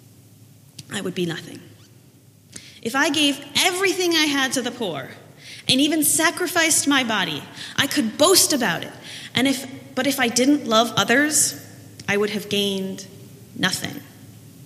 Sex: female